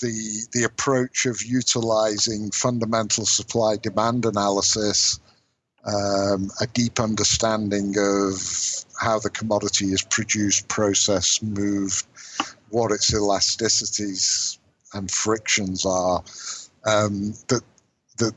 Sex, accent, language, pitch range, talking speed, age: male, British, English, 95-110 Hz, 100 wpm, 50-69